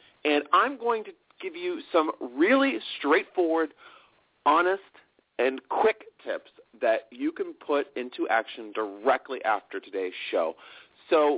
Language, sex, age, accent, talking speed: English, male, 40-59, American, 125 wpm